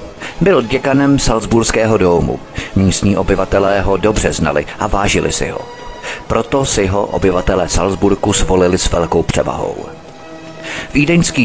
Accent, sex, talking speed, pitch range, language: native, male, 120 wpm, 90-115 Hz, Czech